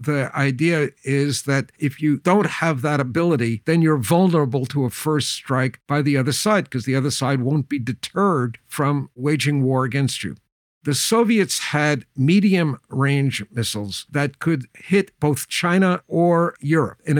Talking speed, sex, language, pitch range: 165 wpm, male, English, 125-155 Hz